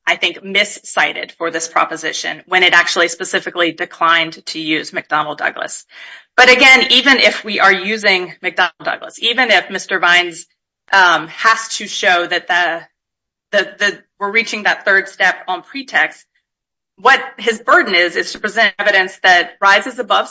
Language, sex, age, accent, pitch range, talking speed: English, female, 30-49, American, 175-220 Hz, 160 wpm